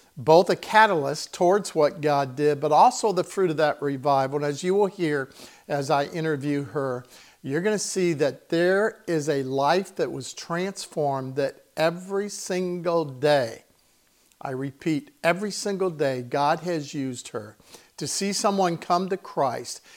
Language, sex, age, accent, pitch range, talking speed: English, male, 50-69, American, 140-180 Hz, 160 wpm